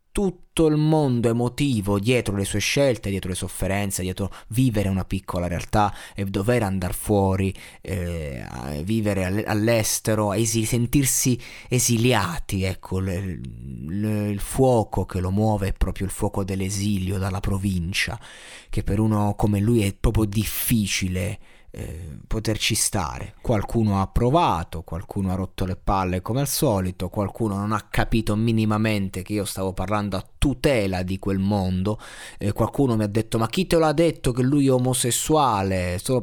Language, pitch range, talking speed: Italian, 95-120 Hz, 145 wpm